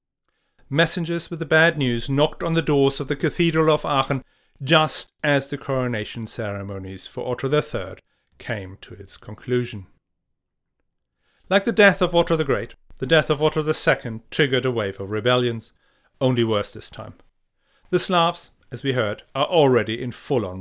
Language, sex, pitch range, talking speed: English, male, 115-155 Hz, 165 wpm